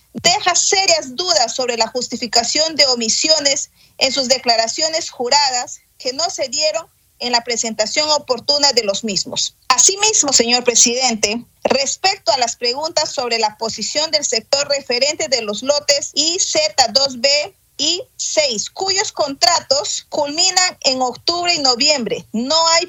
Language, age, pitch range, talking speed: Spanish, 40-59, 240-310 Hz, 135 wpm